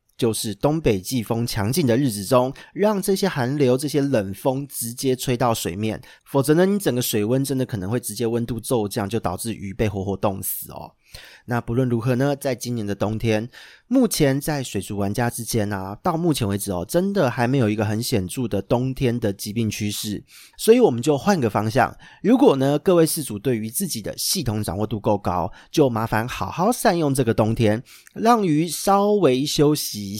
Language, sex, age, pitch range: Chinese, male, 30-49, 105-140 Hz